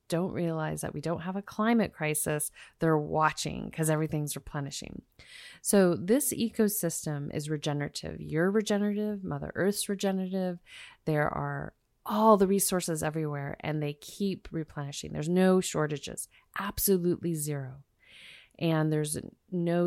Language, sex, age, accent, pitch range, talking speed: English, female, 30-49, American, 155-190 Hz, 125 wpm